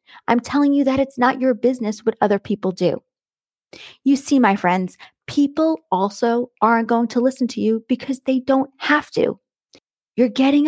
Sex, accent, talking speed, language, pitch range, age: female, American, 175 wpm, English, 195-250 Hz, 30-49